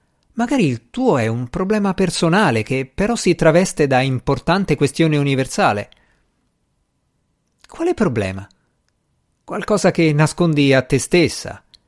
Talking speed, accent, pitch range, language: 115 wpm, native, 115-180 Hz, Italian